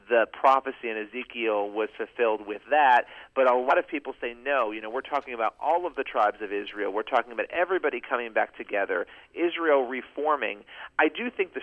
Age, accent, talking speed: 40-59, American, 200 wpm